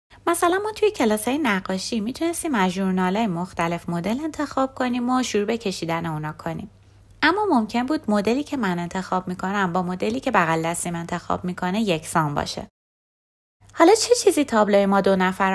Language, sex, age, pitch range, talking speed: Persian, female, 20-39, 170-240 Hz, 160 wpm